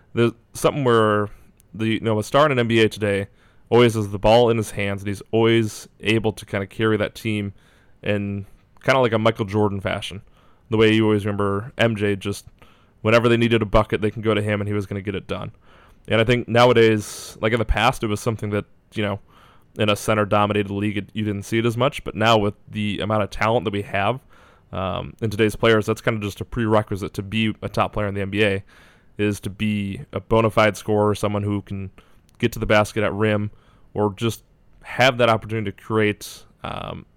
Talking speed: 225 wpm